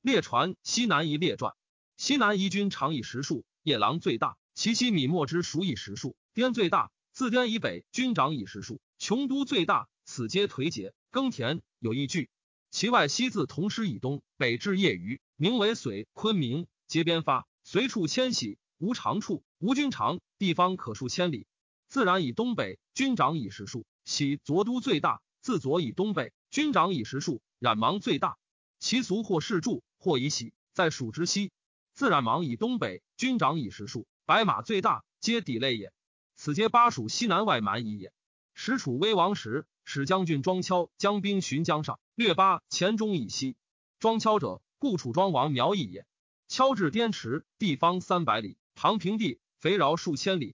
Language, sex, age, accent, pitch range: Chinese, male, 30-49, native, 145-220 Hz